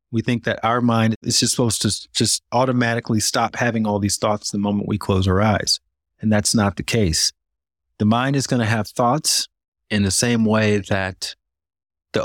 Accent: American